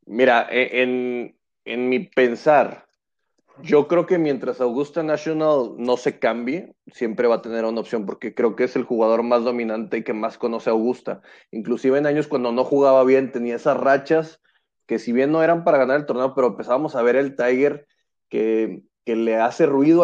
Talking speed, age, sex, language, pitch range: 190 wpm, 30-49, male, Spanish, 120-150 Hz